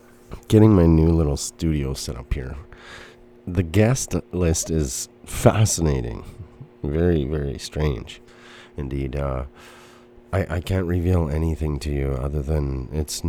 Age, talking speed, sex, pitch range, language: 30-49, 125 wpm, male, 75-100 Hz, English